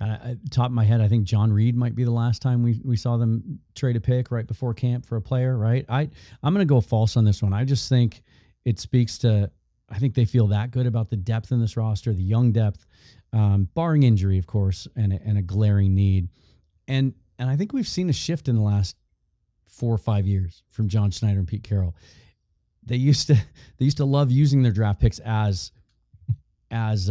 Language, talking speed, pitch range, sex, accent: English, 225 wpm, 100-120 Hz, male, American